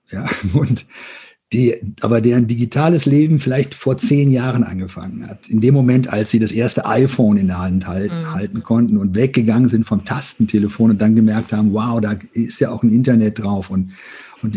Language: German